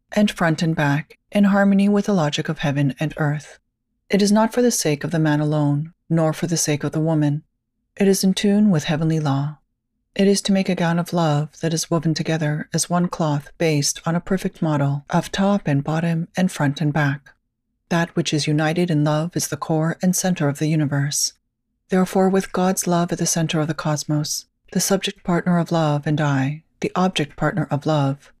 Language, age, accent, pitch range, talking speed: English, 40-59, American, 150-185 Hz, 215 wpm